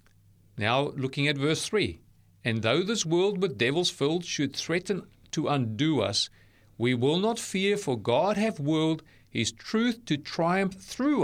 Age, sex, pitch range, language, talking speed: 40-59, male, 110-185 Hz, English, 160 wpm